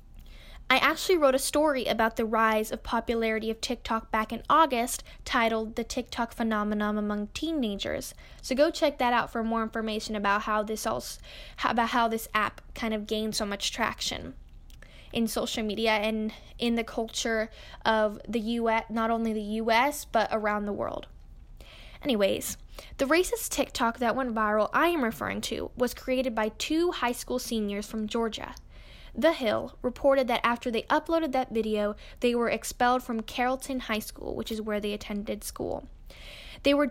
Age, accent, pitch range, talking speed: 10-29, American, 220-255 Hz, 170 wpm